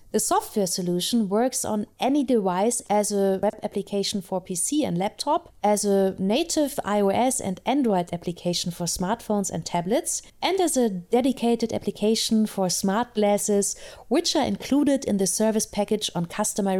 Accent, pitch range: German, 195-245 Hz